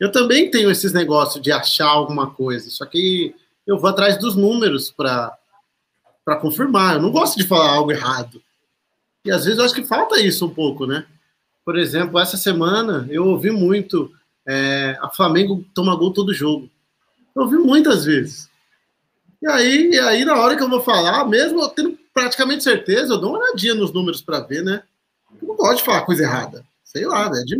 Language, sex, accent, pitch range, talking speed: Portuguese, male, Brazilian, 160-230 Hz, 195 wpm